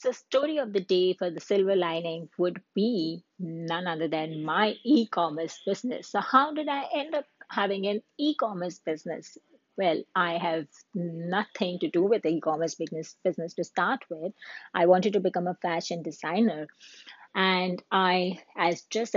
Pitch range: 170-220 Hz